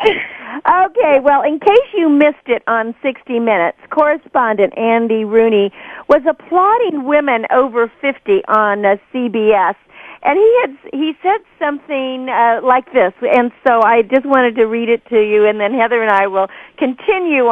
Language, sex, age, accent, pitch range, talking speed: English, female, 50-69, American, 220-300 Hz, 160 wpm